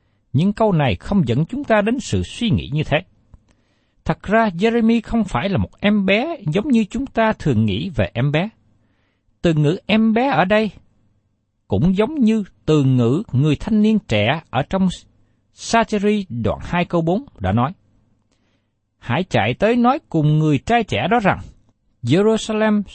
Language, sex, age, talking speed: Vietnamese, male, 60-79, 175 wpm